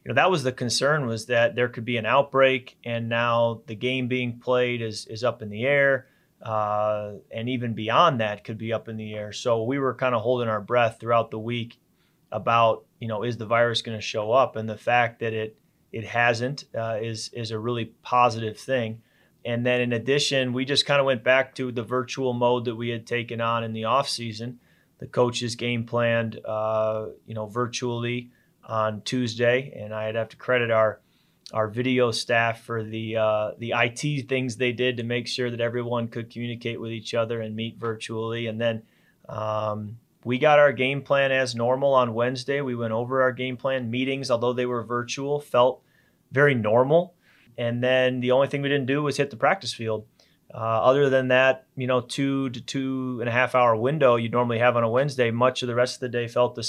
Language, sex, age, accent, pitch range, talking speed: English, male, 30-49, American, 115-130 Hz, 215 wpm